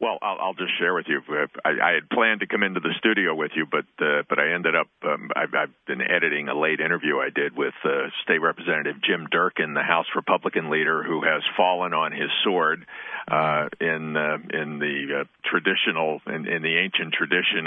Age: 50-69